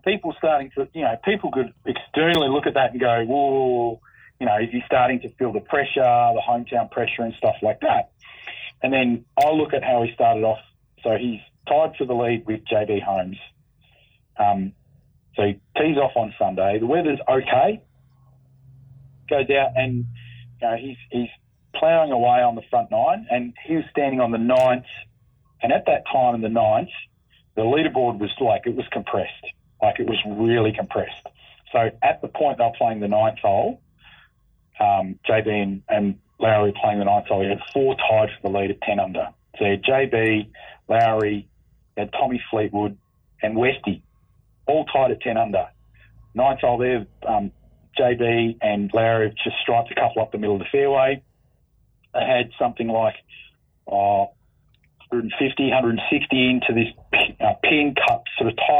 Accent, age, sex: Australian, 40-59, male